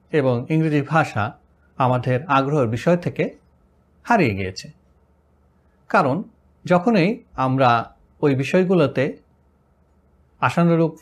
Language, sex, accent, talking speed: Bengali, male, native, 80 wpm